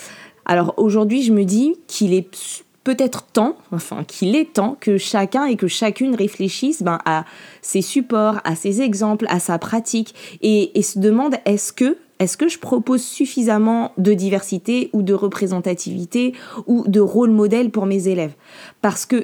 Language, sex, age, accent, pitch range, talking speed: French, female, 20-39, French, 180-225 Hz, 170 wpm